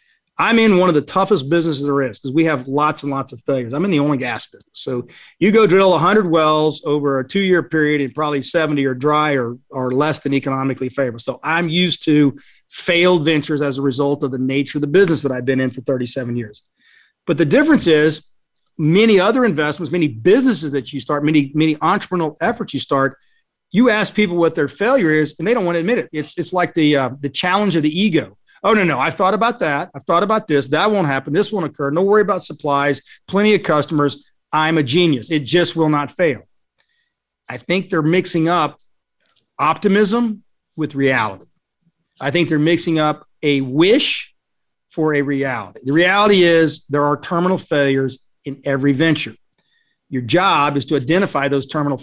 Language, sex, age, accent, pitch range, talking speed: English, male, 40-59, American, 140-180 Hz, 205 wpm